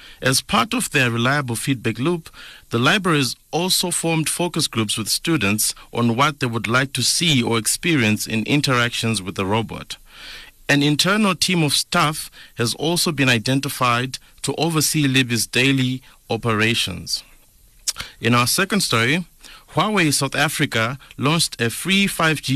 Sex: male